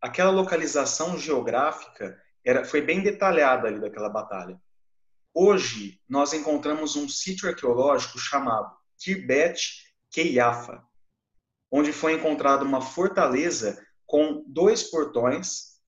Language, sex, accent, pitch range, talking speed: Portuguese, male, Brazilian, 125-165 Hz, 100 wpm